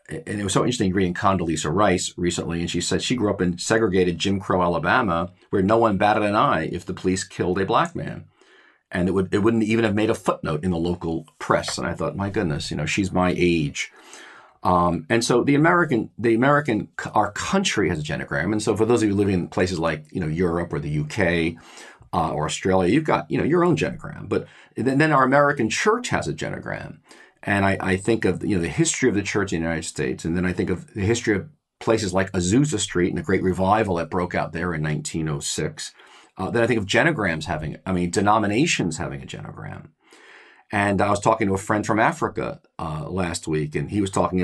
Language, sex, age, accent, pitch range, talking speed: English, male, 40-59, American, 85-110 Hz, 230 wpm